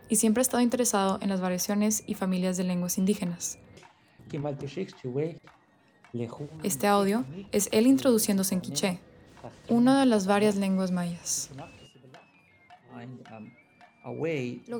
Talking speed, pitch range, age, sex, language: 110 wpm, 185-225 Hz, 10-29, female, English